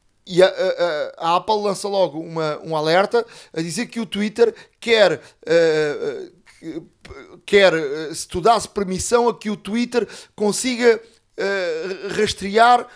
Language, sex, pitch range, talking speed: Portuguese, male, 175-235 Hz, 135 wpm